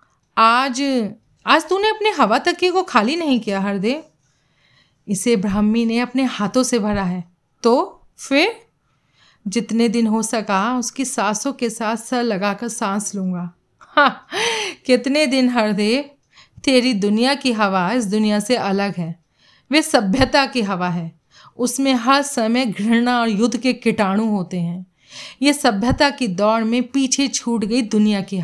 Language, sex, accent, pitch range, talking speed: Hindi, female, native, 200-250 Hz, 150 wpm